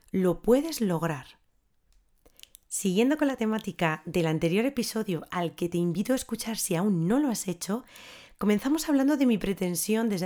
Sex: female